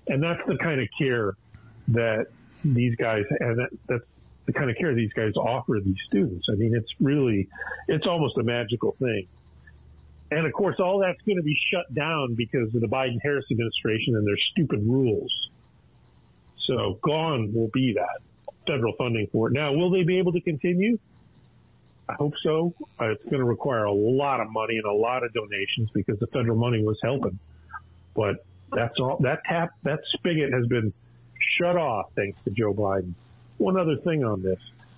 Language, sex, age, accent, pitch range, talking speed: English, male, 50-69, American, 110-145 Hz, 190 wpm